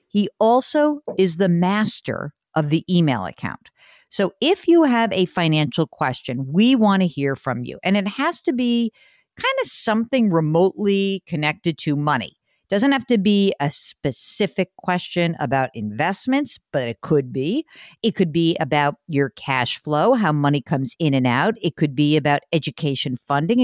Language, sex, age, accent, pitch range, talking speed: English, female, 50-69, American, 150-235 Hz, 170 wpm